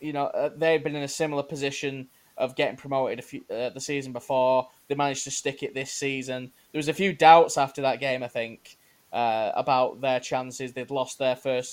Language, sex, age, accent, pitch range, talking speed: English, male, 10-29, British, 130-150 Hz, 225 wpm